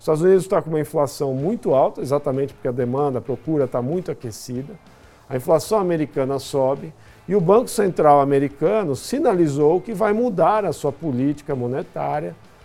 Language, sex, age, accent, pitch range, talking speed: Portuguese, male, 50-69, Brazilian, 125-170 Hz, 160 wpm